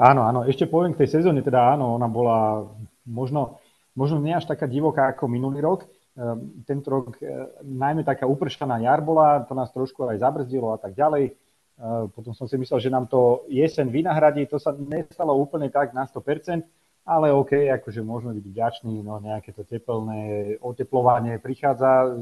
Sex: male